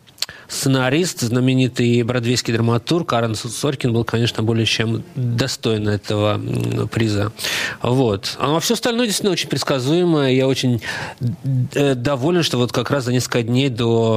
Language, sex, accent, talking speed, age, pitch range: Russian, male, native, 125 wpm, 20-39, 115-135 Hz